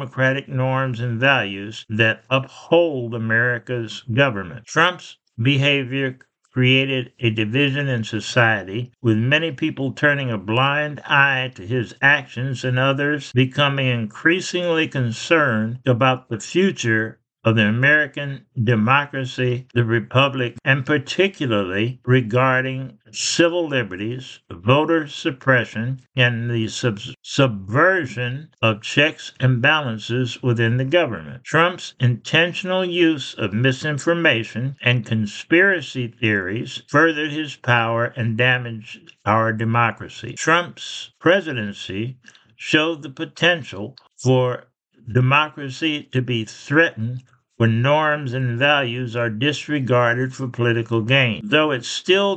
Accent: American